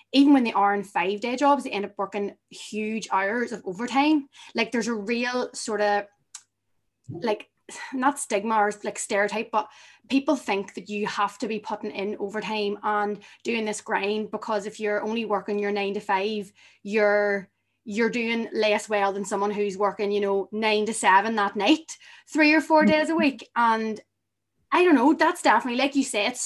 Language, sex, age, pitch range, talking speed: English, female, 20-39, 205-250 Hz, 190 wpm